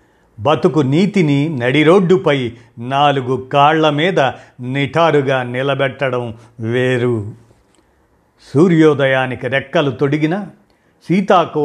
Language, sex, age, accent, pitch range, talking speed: Telugu, male, 50-69, native, 125-155 Hz, 65 wpm